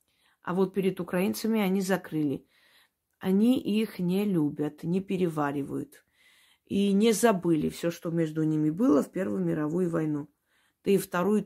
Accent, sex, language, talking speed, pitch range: native, female, Russian, 140 wpm, 165-210 Hz